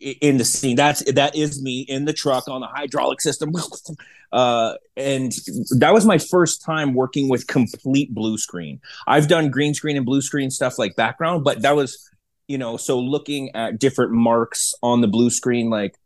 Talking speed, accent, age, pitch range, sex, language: 190 wpm, American, 30-49, 120-145 Hz, male, English